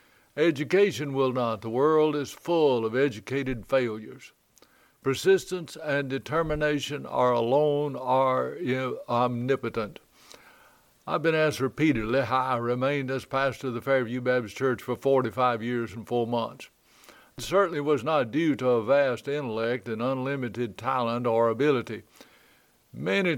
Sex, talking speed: male, 140 wpm